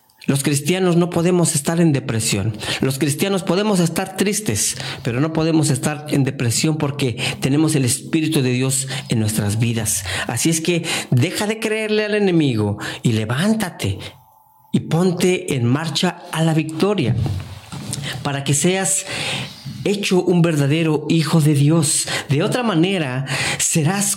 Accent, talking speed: Mexican, 140 wpm